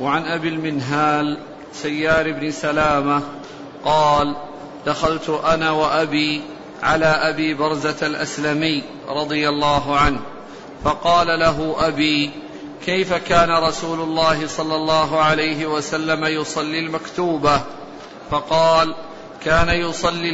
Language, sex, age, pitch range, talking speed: Arabic, male, 50-69, 150-165 Hz, 95 wpm